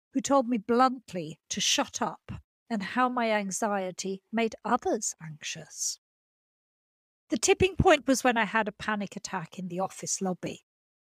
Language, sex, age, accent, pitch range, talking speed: English, female, 50-69, British, 185-255 Hz, 150 wpm